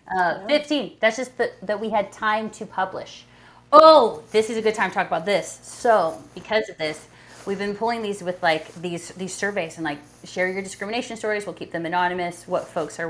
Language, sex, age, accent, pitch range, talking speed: English, female, 30-49, American, 155-205 Hz, 210 wpm